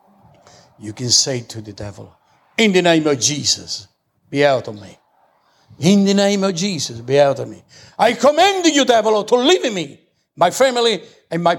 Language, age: English, 60-79